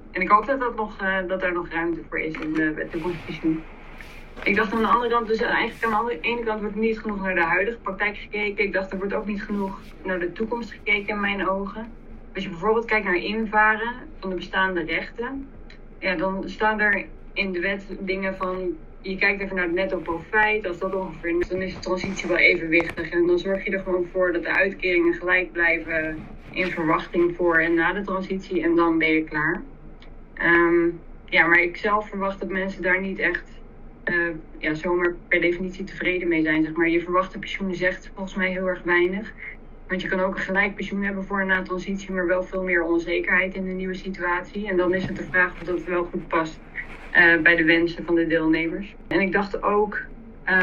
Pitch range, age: 175-200 Hz, 20-39